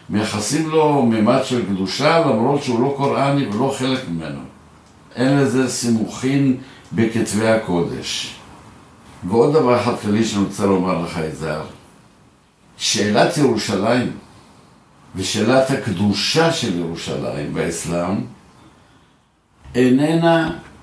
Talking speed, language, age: 100 wpm, Hebrew, 60-79